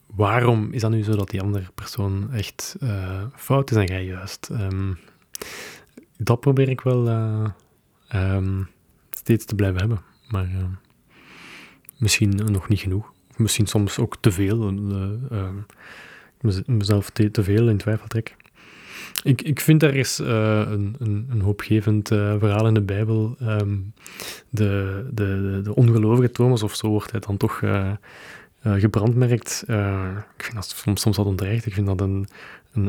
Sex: male